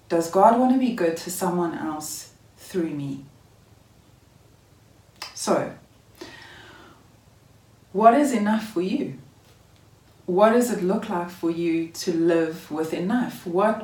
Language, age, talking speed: English, 30-49, 125 wpm